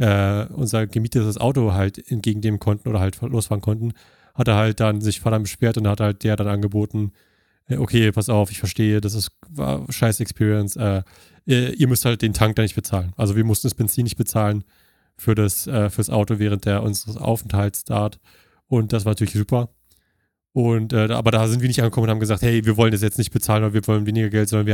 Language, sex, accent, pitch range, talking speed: German, male, German, 105-115 Hz, 225 wpm